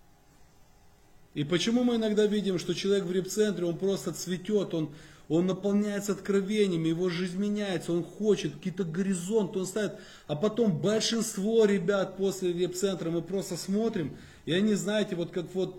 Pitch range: 165-205 Hz